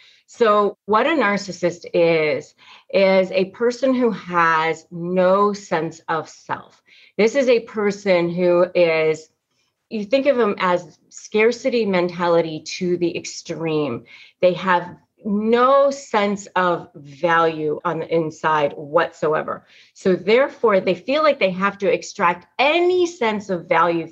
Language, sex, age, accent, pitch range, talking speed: English, female, 30-49, American, 175-220 Hz, 130 wpm